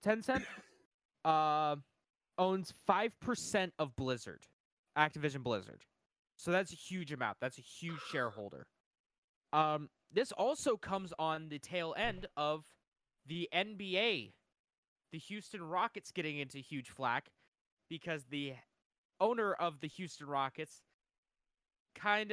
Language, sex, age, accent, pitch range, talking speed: English, male, 20-39, American, 145-190 Hz, 115 wpm